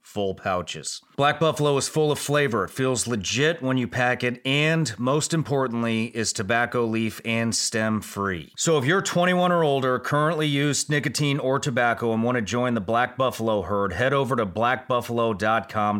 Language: English